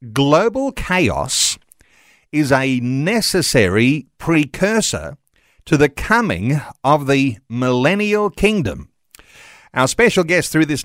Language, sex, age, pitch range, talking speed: English, male, 50-69, 130-185 Hz, 100 wpm